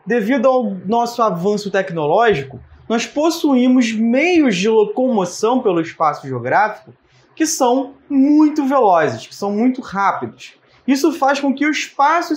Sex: male